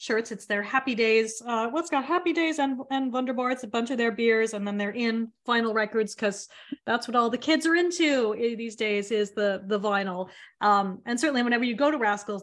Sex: female